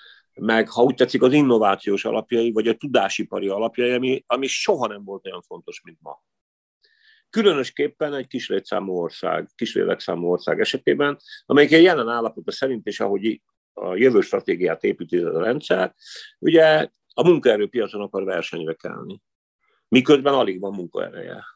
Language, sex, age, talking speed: Hungarian, male, 50-69, 140 wpm